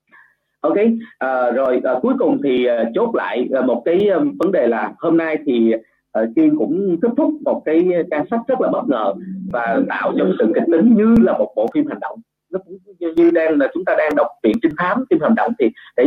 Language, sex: Vietnamese, male